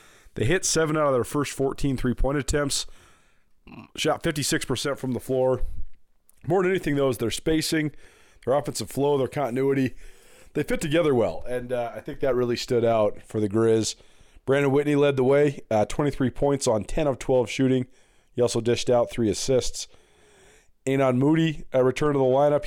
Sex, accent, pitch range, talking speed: male, American, 120-145 Hz, 180 wpm